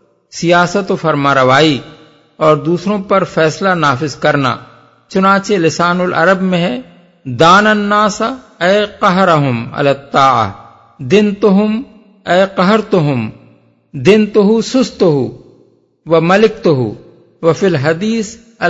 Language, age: Urdu, 50-69